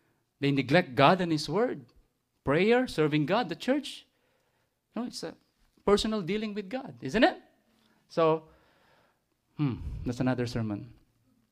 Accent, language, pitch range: Filipino, English, 130-165 Hz